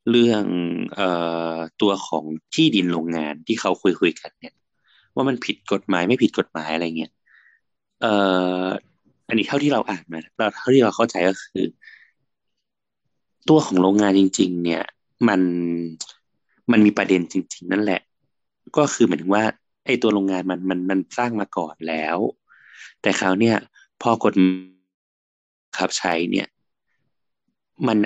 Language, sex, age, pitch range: Thai, male, 20-39, 85-110 Hz